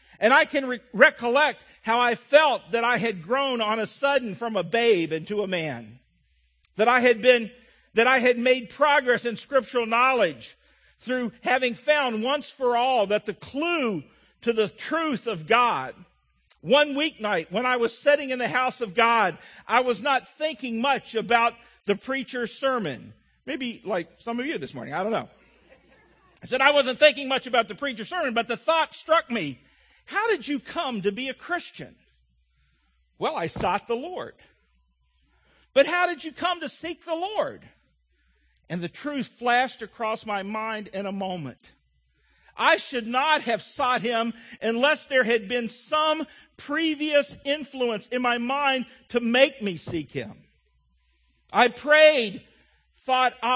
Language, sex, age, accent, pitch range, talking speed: English, male, 50-69, American, 205-275 Hz, 160 wpm